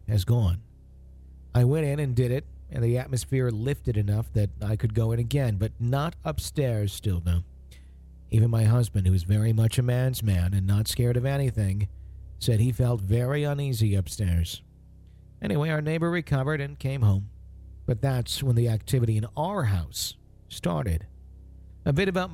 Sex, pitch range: male, 90-130 Hz